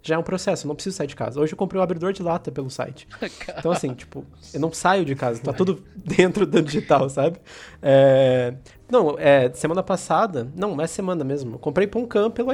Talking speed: 220 wpm